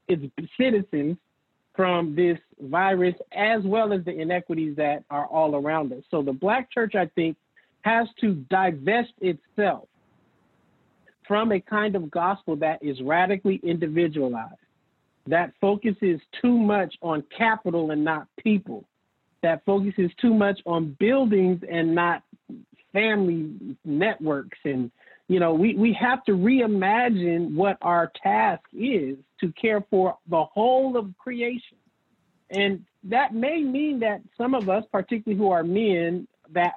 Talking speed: 140 wpm